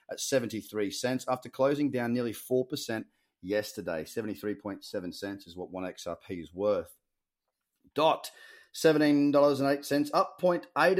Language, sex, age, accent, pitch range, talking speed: English, male, 30-49, Australian, 100-130 Hz, 105 wpm